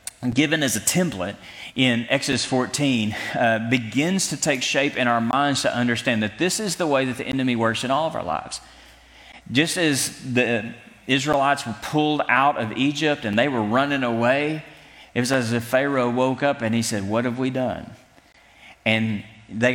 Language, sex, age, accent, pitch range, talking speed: English, male, 30-49, American, 110-140 Hz, 185 wpm